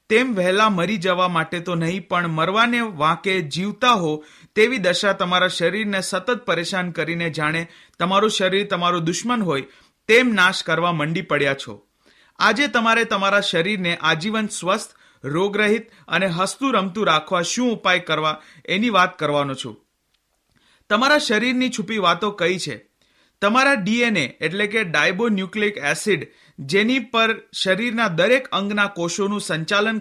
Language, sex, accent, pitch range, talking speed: Hindi, male, native, 170-215 Hz, 90 wpm